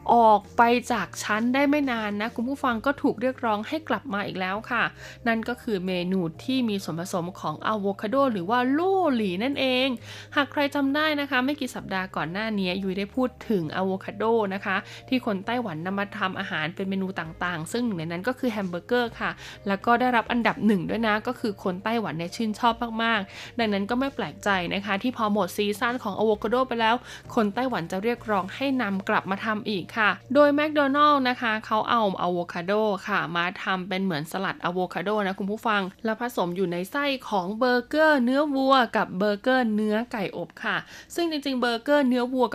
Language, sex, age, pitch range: Thai, female, 20-39, 190-245 Hz